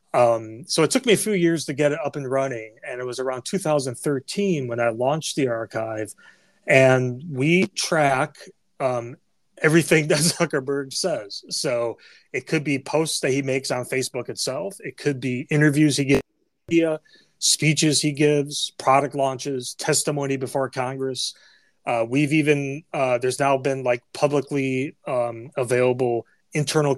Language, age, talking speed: English, 30-49, 150 wpm